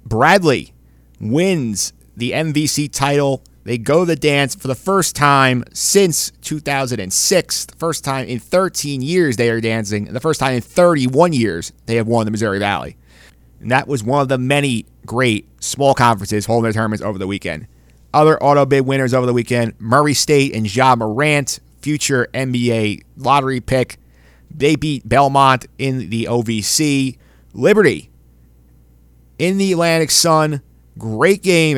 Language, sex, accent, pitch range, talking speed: English, male, American, 105-145 Hz, 155 wpm